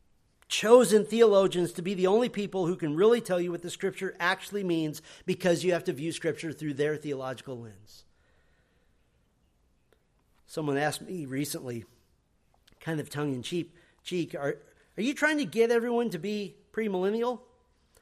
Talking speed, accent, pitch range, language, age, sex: 145 wpm, American, 140-195 Hz, English, 40-59, male